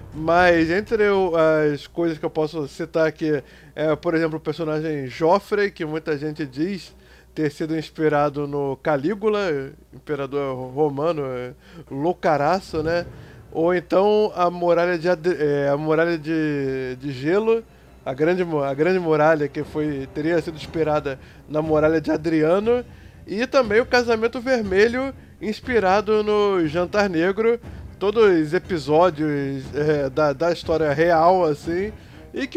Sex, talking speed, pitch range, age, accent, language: male, 135 wpm, 150-185 Hz, 20-39, Brazilian, Portuguese